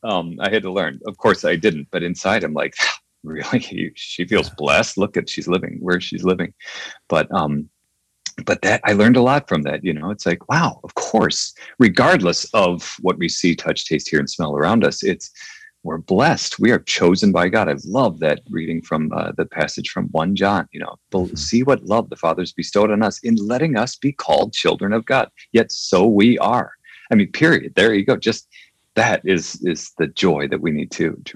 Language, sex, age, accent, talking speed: English, male, 40-59, American, 210 wpm